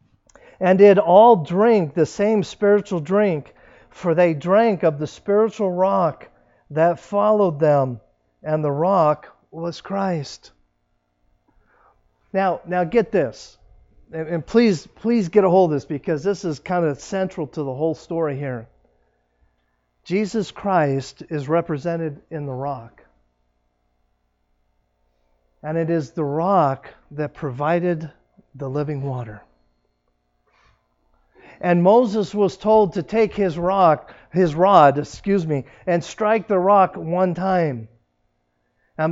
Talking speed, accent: 125 wpm, American